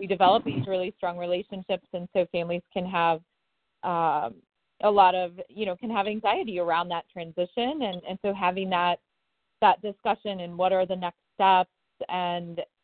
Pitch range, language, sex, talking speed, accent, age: 175-215 Hz, English, female, 175 wpm, American, 30-49